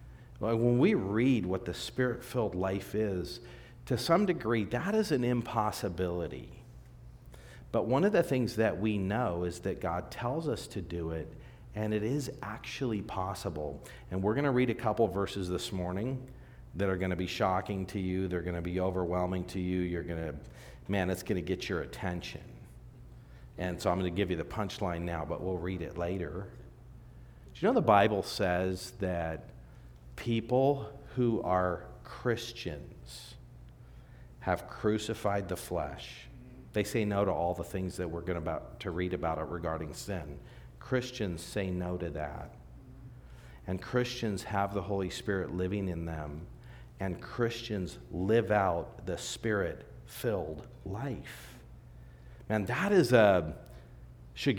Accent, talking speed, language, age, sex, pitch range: American, 160 wpm, English, 50-69, male, 85-115 Hz